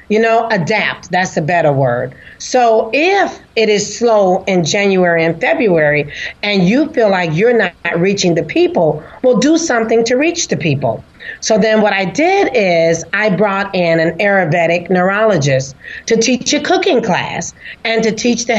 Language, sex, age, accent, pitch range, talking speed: English, female, 40-59, American, 175-235 Hz, 170 wpm